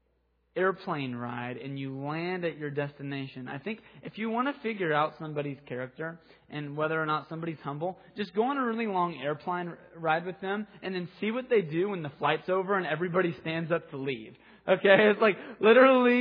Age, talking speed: 20-39, 200 wpm